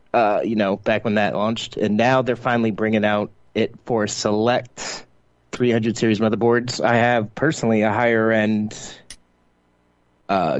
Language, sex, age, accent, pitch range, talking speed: English, male, 30-49, American, 100-125 Hz, 145 wpm